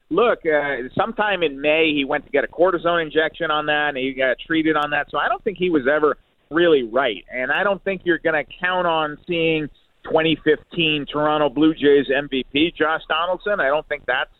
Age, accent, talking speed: 40-59, American, 210 wpm